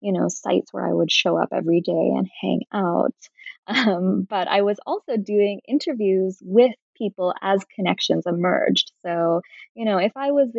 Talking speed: 175 wpm